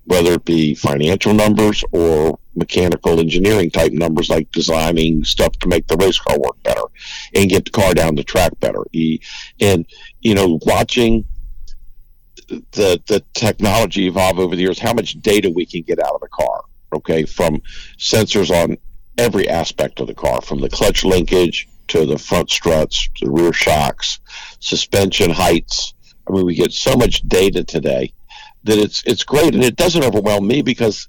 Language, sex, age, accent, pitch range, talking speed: English, male, 50-69, American, 85-110 Hz, 175 wpm